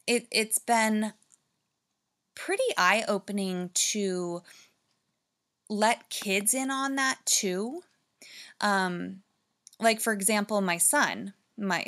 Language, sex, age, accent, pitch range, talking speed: English, female, 20-39, American, 185-225 Hz, 95 wpm